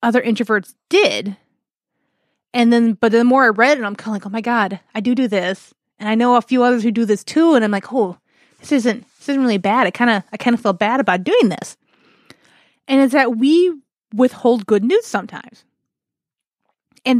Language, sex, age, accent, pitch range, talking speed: English, female, 20-39, American, 200-250 Hz, 215 wpm